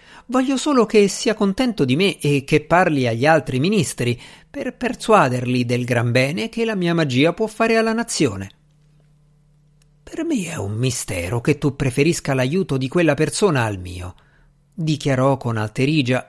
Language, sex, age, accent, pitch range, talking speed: Italian, male, 50-69, native, 130-185 Hz, 160 wpm